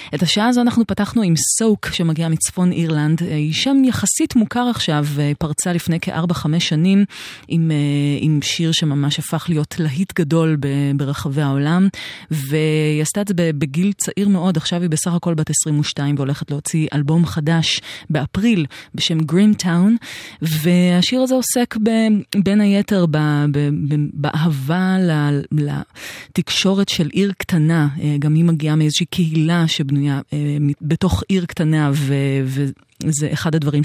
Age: 30-49